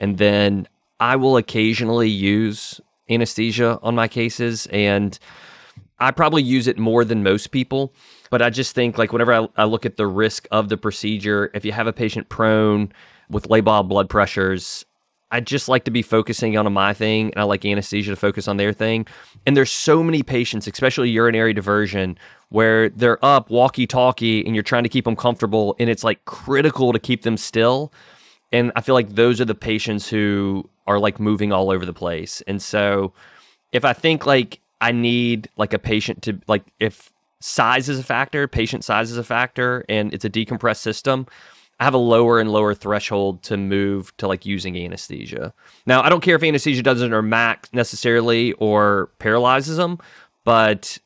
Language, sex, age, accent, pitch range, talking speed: English, male, 30-49, American, 100-120 Hz, 190 wpm